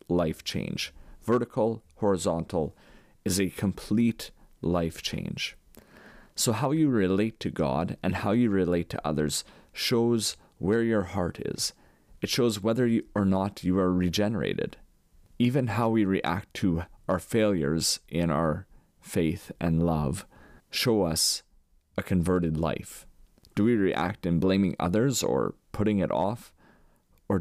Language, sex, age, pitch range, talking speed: English, male, 30-49, 85-105 Hz, 135 wpm